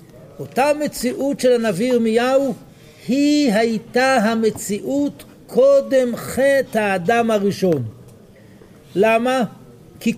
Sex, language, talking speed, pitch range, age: male, Hebrew, 85 wpm, 185-255 Hz, 60-79